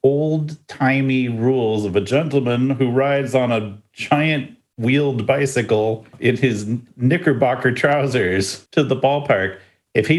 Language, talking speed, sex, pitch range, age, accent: English, 130 wpm, male, 105-140 Hz, 40-59, American